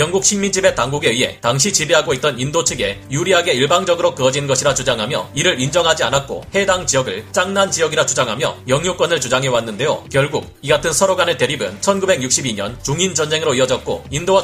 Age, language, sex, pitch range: 40-59, Korean, male, 135-185 Hz